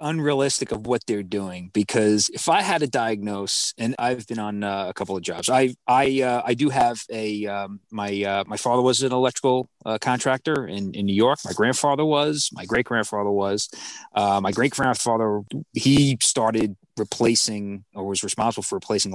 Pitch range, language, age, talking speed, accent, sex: 100-130 Hz, English, 30-49, 190 wpm, American, male